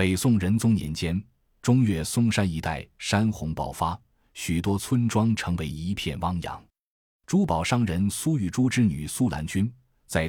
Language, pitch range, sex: Chinese, 85-120 Hz, male